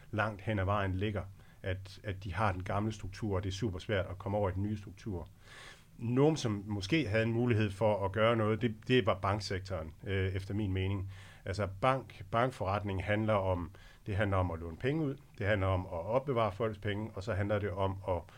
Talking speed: 220 wpm